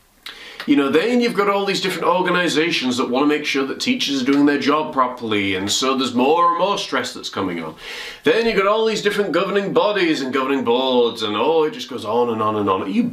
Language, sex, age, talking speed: English, male, 30-49, 245 wpm